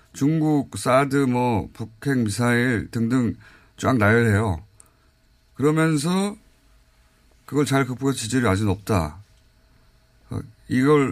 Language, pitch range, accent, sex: Korean, 105-145 Hz, native, male